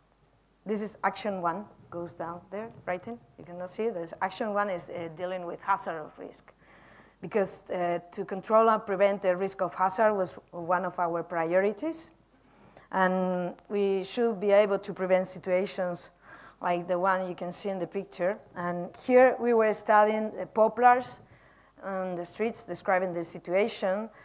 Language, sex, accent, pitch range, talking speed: English, female, Spanish, 180-220 Hz, 165 wpm